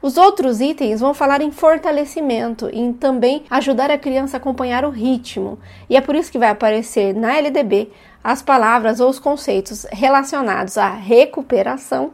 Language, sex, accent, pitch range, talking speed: Portuguese, female, Brazilian, 235-295 Hz, 165 wpm